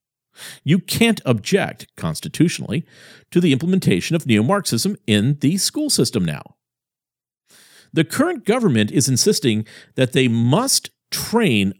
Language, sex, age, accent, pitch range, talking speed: English, male, 50-69, American, 110-165 Hz, 115 wpm